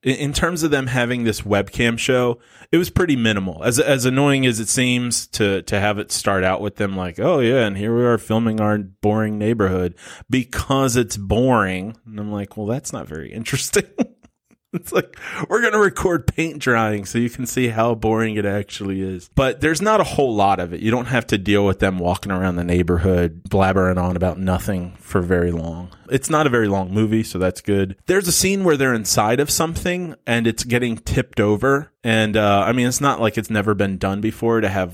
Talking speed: 220 wpm